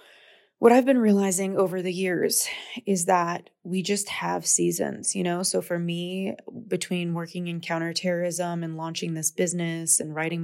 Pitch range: 160-185 Hz